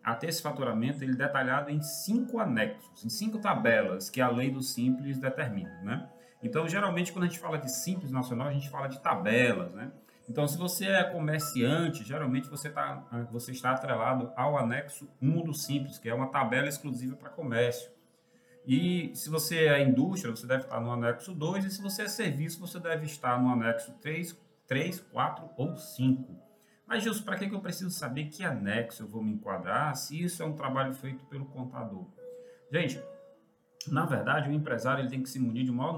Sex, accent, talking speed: male, Brazilian, 190 wpm